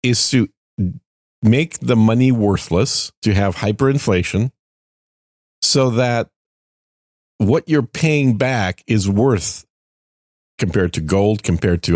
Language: English